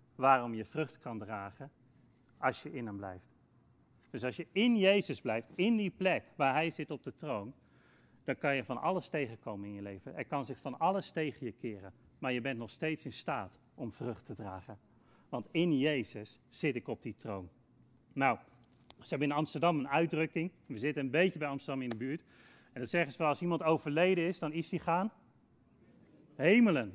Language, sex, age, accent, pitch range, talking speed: Dutch, male, 40-59, Dutch, 130-185 Hz, 205 wpm